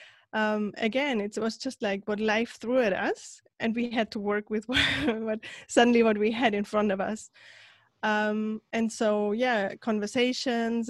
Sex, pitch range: female, 205-240 Hz